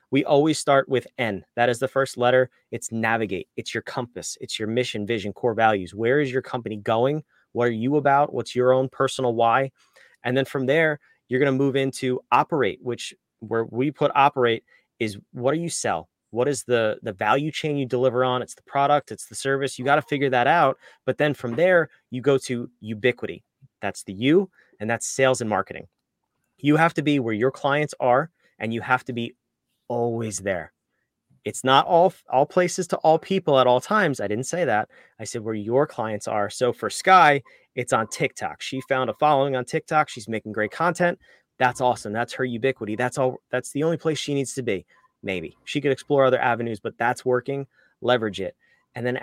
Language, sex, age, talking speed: English, male, 30-49, 210 wpm